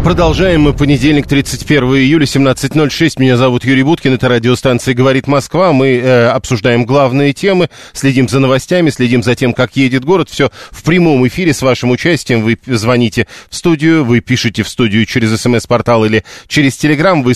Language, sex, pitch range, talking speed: Russian, male, 125-150 Hz, 170 wpm